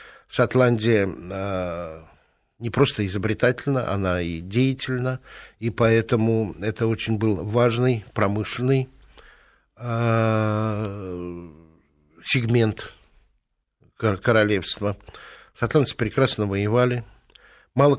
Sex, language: male, Russian